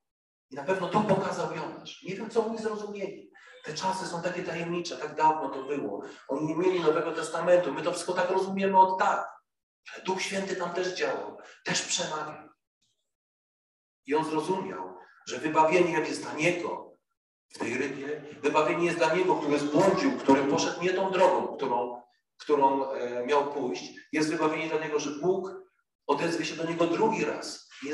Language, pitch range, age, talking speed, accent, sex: Polish, 165-240 Hz, 40-59, 170 wpm, native, male